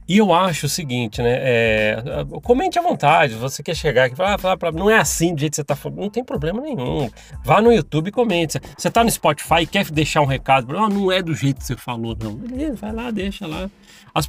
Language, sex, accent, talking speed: Portuguese, male, Brazilian, 245 wpm